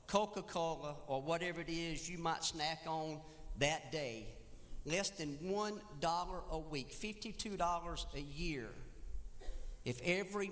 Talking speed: 135 wpm